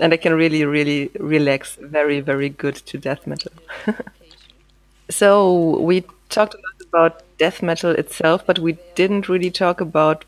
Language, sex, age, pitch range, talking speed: English, female, 30-49, 160-185 Hz, 160 wpm